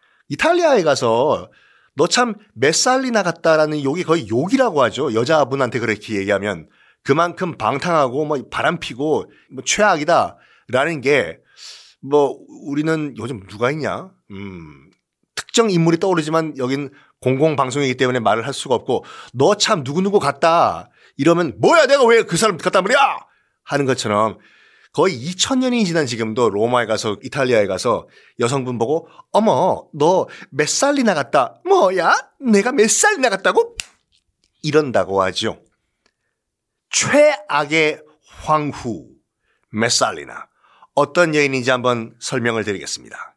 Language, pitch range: Korean, 130-205 Hz